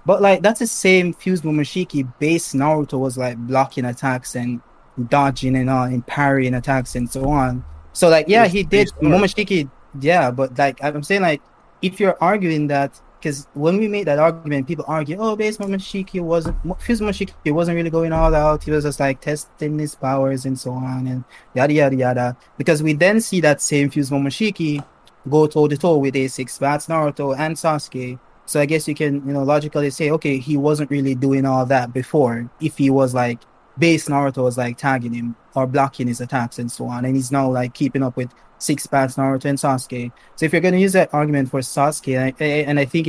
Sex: male